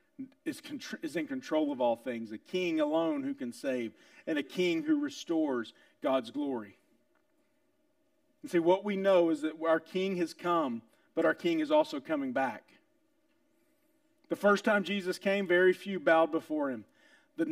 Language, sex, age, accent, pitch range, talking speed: English, male, 40-59, American, 190-300 Hz, 165 wpm